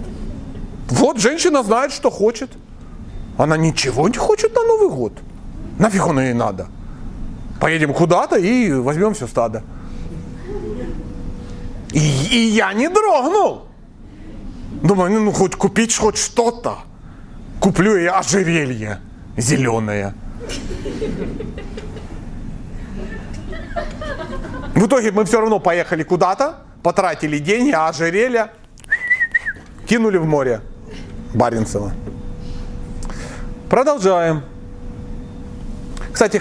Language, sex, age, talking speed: Russian, male, 40-59, 90 wpm